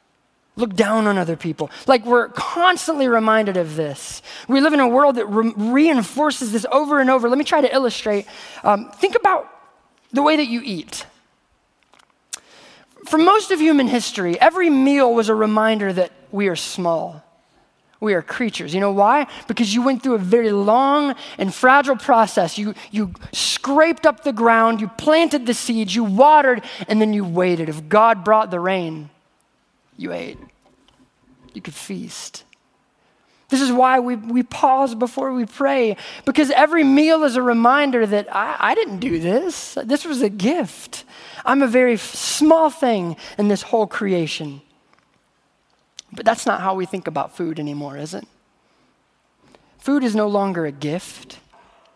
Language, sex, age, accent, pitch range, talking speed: English, male, 20-39, American, 205-275 Hz, 165 wpm